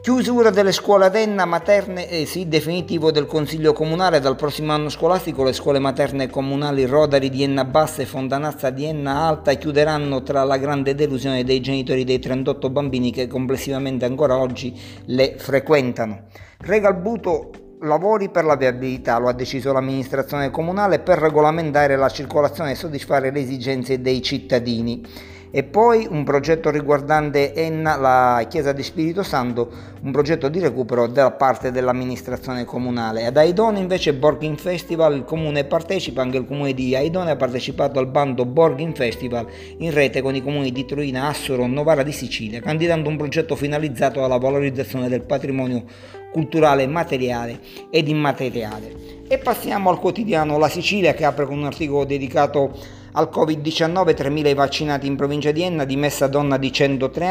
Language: Italian